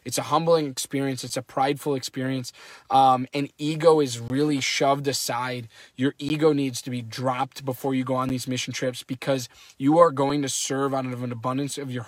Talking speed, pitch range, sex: 200 wpm, 130-145 Hz, male